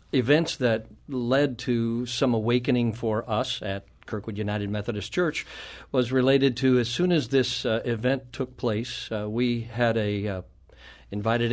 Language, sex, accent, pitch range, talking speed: English, male, American, 110-130 Hz, 150 wpm